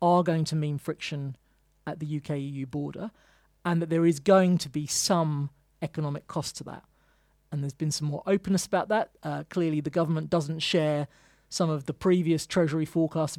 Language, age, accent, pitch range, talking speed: English, 40-59, British, 145-175 Hz, 185 wpm